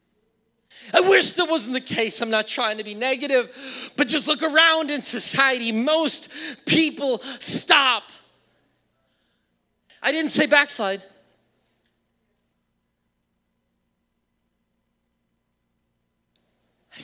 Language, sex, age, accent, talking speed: English, male, 40-59, American, 90 wpm